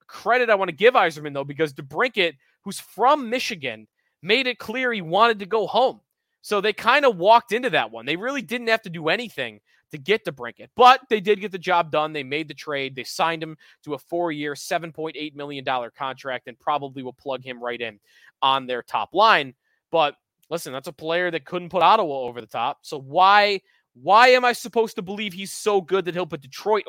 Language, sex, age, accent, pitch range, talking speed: English, male, 20-39, American, 145-205 Hz, 215 wpm